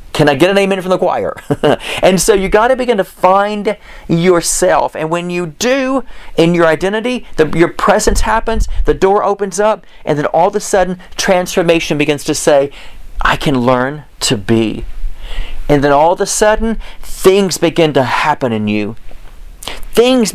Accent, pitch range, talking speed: American, 150-205 Hz, 175 wpm